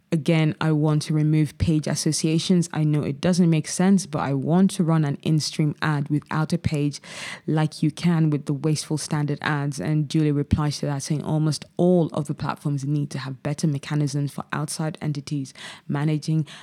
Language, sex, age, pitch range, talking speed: English, female, 20-39, 150-180 Hz, 190 wpm